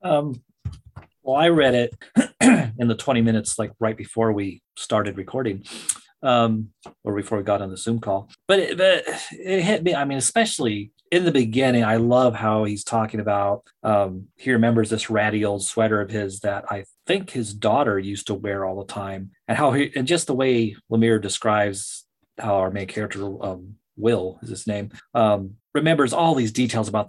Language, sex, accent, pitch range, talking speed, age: English, male, American, 100-120 Hz, 185 wpm, 30-49